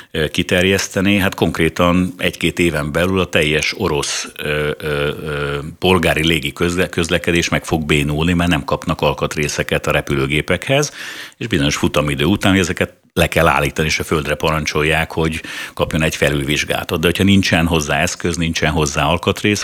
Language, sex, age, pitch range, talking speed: Hungarian, male, 60-79, 80-100 Hz, 145 wpm